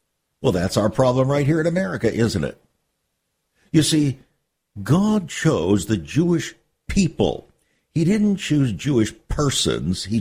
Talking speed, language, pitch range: 135 wpm, English, 100-140 Hz